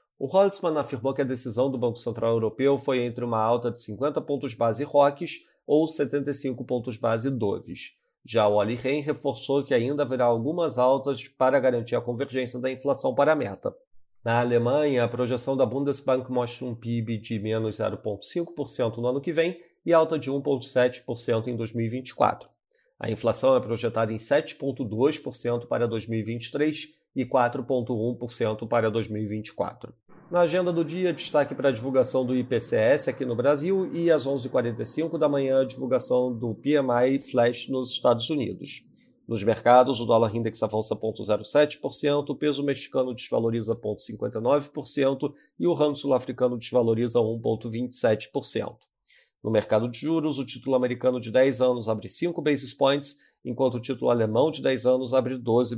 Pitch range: 120-140 Hz